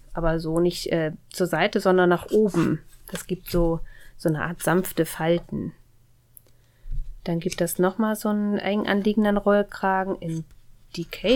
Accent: German